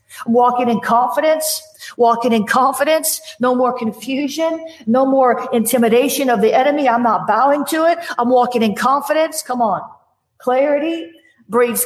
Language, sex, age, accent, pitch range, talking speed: English, female, 50-69, American, 225-280 Hz, 140 wpm